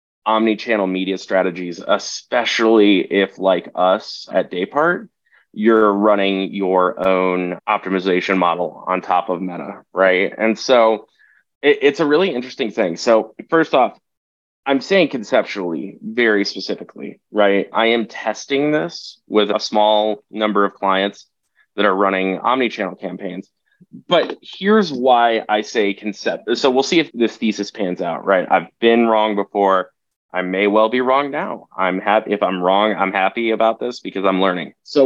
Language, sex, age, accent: English, male, 20-39, American